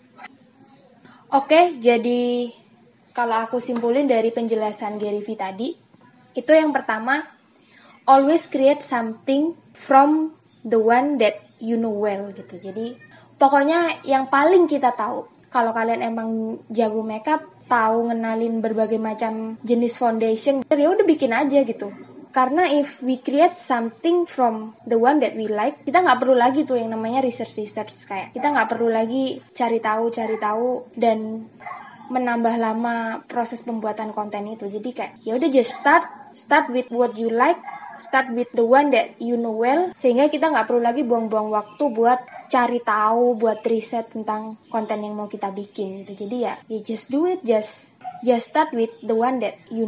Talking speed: 160 wpm